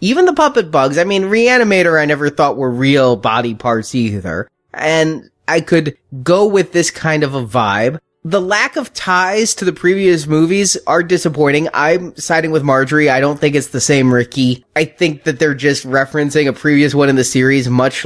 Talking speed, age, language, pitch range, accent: 195 wpm, 20-39, English, 135-185 Hz, American